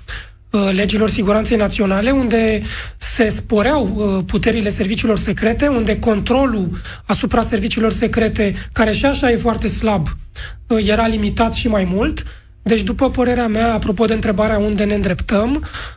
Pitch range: 210-245 Hz